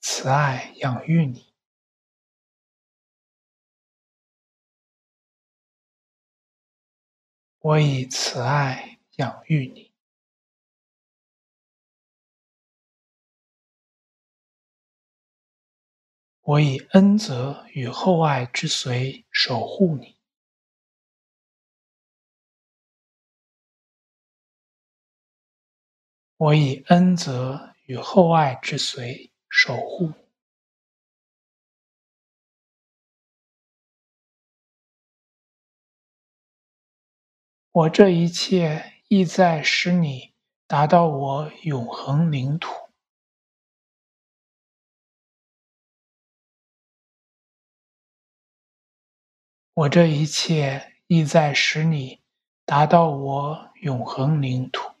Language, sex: English, male